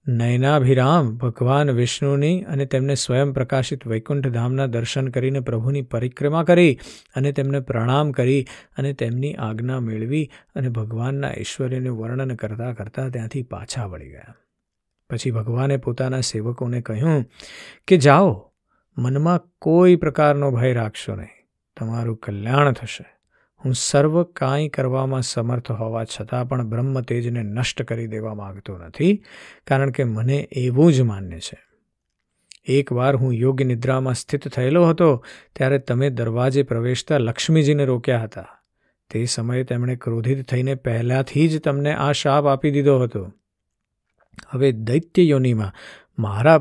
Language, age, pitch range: Gujarati, 50-69, 115-140 Hz